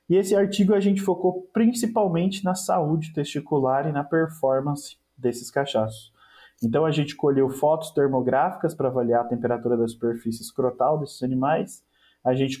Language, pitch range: Portuguese, 120-160 Hz